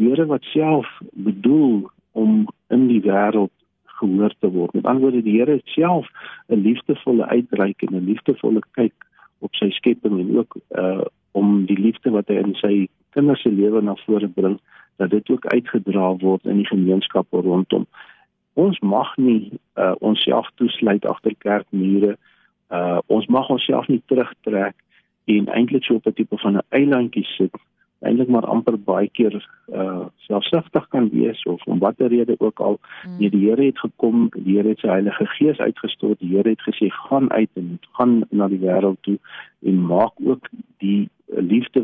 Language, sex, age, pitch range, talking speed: English, male, 50-69, 100-120 Hz, 170 wpm